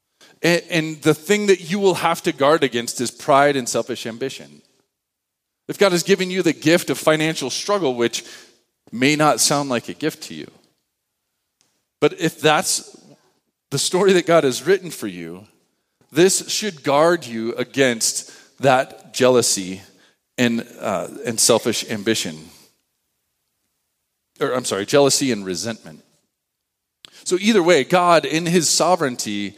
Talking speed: 140 wpm